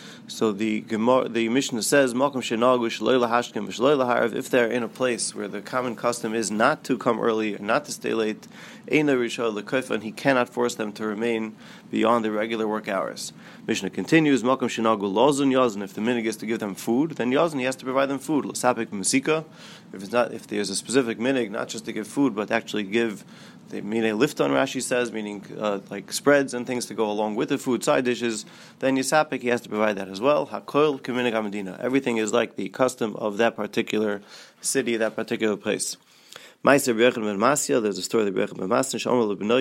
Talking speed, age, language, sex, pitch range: 175 wpm, 30-49, English, male, 110-130 Hz